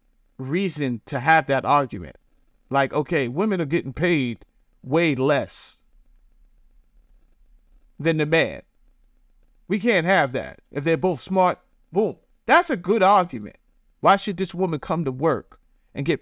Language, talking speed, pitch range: English, 140 wpm, 150-240 Hz